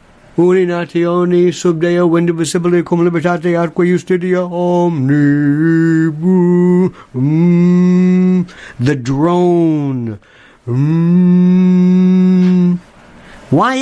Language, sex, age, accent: English, male, 60-79, American